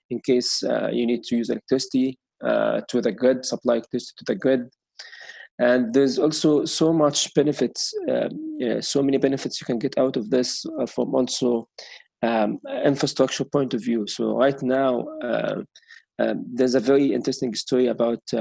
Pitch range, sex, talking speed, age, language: 125-145 Hz, male, 165 wpm, 20-39, English